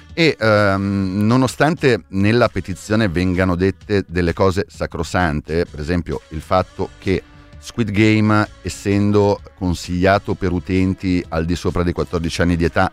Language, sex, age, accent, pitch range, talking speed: Italian, male, 30-49, native, 90-110 Hz, 135 wpm